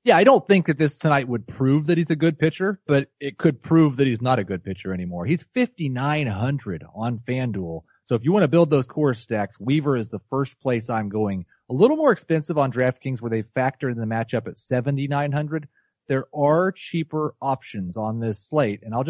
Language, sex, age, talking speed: English, male, 30-49, 215 wpm